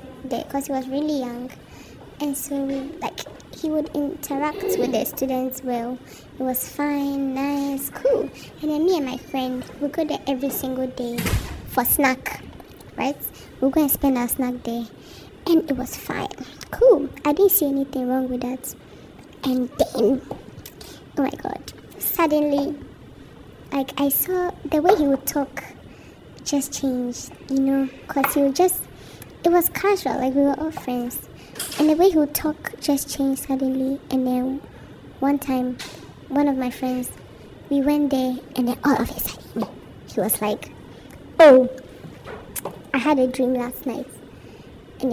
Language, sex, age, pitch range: English, male, 10-29, 260-310 Hz